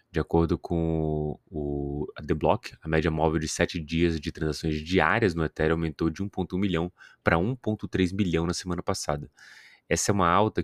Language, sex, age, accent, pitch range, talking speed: Portuguese, male, 20-39, Brazilian, 80-100 Hz, 175 wpm